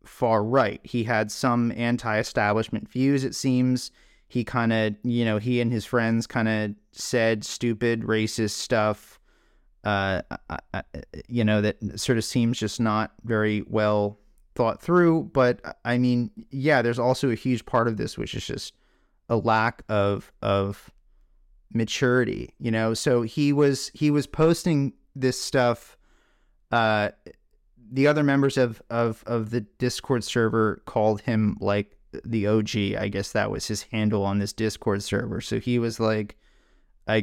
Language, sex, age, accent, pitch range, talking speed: English, male, 30-49, American, 105-125 Hz, 155 wpm